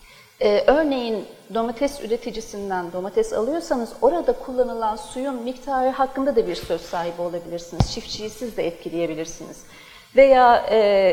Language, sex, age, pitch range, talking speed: Turkish, female, 40-59, 215-280 Hz, 120 wpm